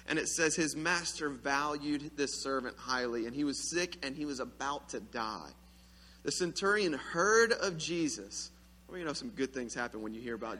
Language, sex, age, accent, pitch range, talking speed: English, male, 30-49, American, 110-175 Hz, 200 wpm